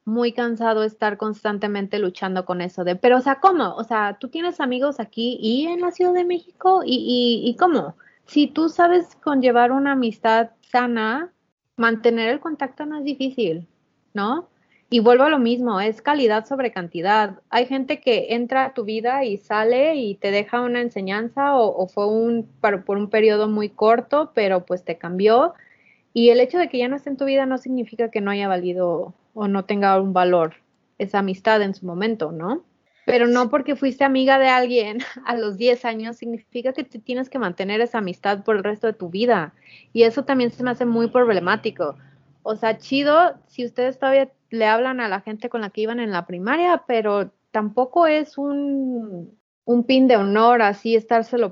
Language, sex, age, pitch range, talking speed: Spanish, female, 30-49, 210-265 Hz, 195 wpm